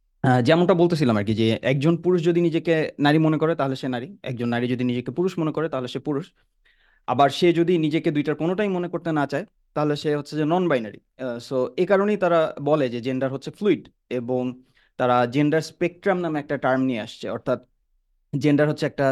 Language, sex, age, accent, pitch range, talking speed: English, male, 30-49, Indian, 125-160 Hz, 185 wpm